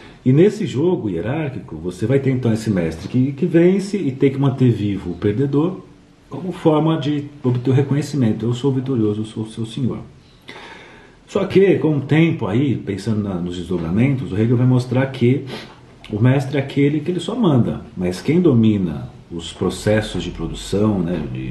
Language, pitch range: Portuguese, 110-150 Hz